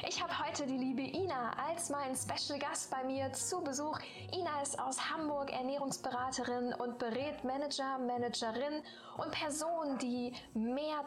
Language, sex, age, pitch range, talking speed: German, female, 10-29, 240-295 Hz, 145 wpm